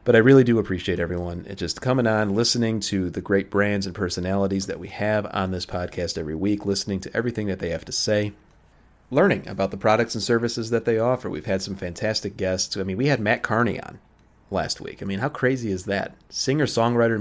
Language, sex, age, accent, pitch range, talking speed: English, male, 30-49, American, 90-115 Hz, 220 wpm